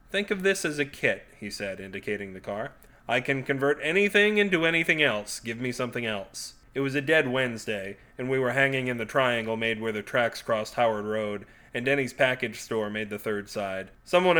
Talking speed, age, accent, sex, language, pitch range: 210 wpm, 30-49, American, male, English, 110-150 Hz